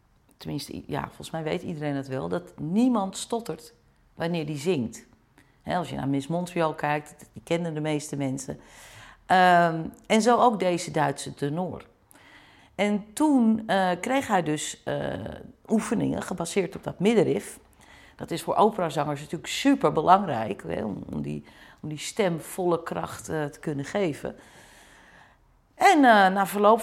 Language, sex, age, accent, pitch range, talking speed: Dutch, female, 40-59, Dutch, 150-205 Hz, 135 wpm